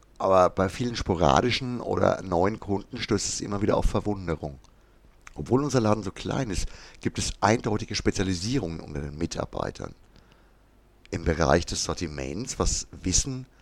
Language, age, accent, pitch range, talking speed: German, 60-79, German, 85-110 Hz, 140 wpm